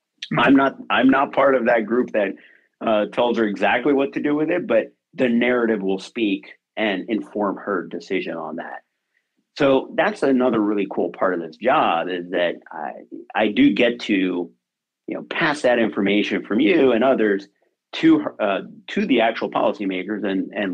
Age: 40-59